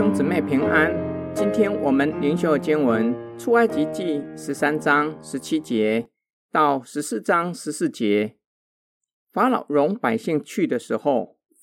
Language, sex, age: Chinese, male, 50-69